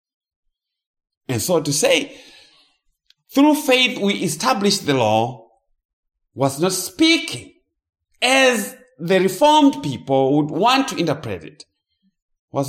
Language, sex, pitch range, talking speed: English, male, 105-175 Hz, 110 wpm